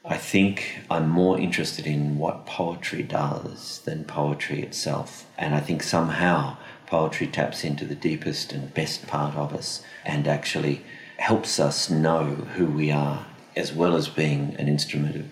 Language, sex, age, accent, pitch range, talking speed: English, male, 40-59, Australian, 75-95 Hz, 160 wpm